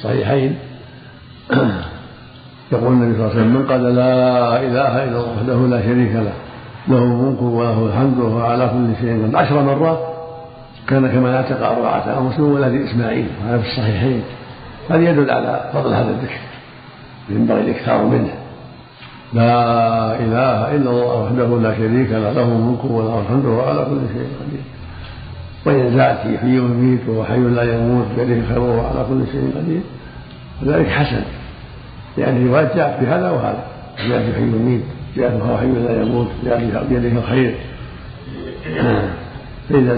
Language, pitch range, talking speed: Arabic, 115-130 Hz, 145 wpm